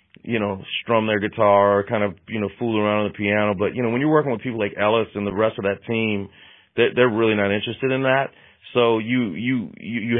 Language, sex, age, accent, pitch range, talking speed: English, male, 40-59, American, 100-120 Hz, 245 wpm